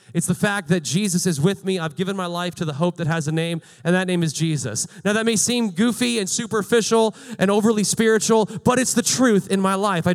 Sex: male